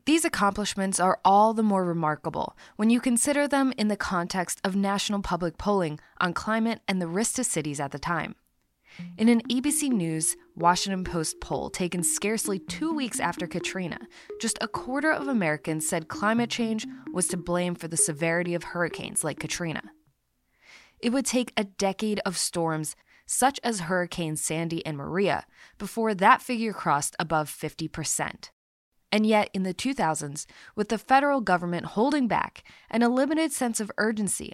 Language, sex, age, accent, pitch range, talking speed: English, female, 20-39, American, 165-225 Hz, 165 wpm